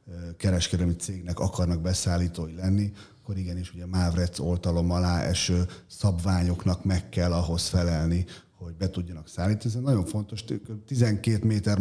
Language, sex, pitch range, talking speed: Hungarian, male, 85-100 Hz, 130 wpm